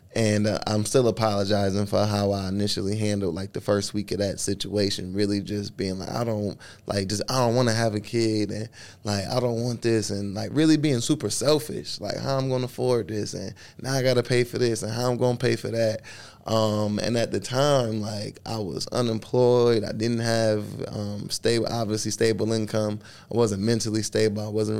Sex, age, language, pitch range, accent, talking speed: male, 20-39, English, 100-115 Hz, American, 220 wpm